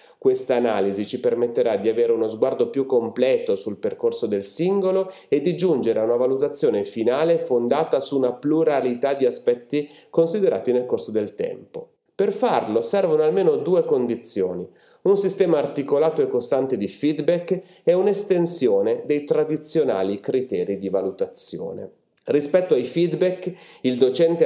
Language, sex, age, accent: Italian, male, 30-49, native